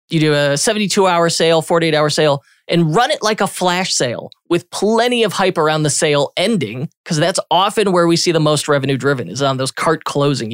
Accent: American